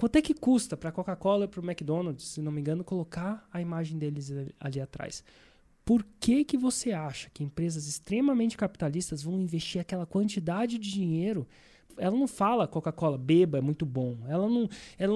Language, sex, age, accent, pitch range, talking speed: Portuguese, male, 20-39, Brazilian, 165-230 Hz, 180 wpm